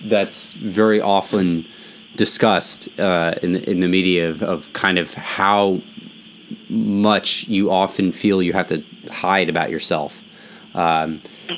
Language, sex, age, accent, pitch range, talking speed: English, male, 30-49, American, 95-120 Hz, 135 wpm